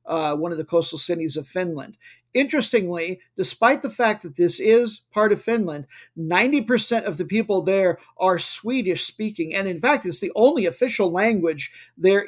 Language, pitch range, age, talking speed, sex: English, 165-205 Hz, 50-69, 175 wpm, male